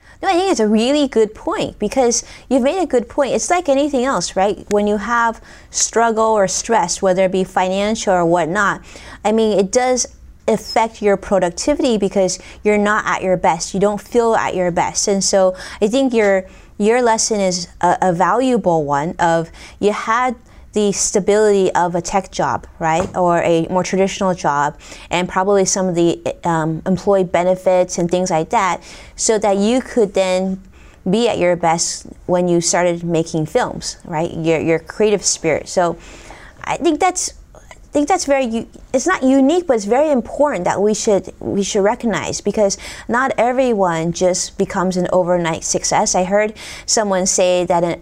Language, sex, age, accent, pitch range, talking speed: English, female, 20-39, American, 180-225 Hz, 180 wpm